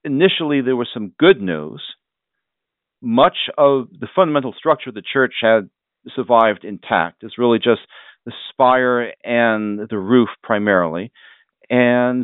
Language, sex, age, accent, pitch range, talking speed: English, male, 50-69, American, 110-130 Hz, 130 wpm